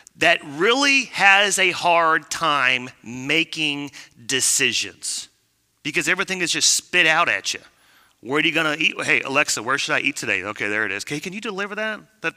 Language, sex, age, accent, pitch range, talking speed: English, male, 30-49, American, 120-170 Hz, 185 wpm